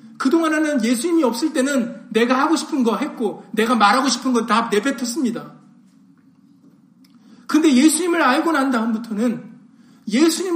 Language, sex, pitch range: Korean, male, 205-265 Hz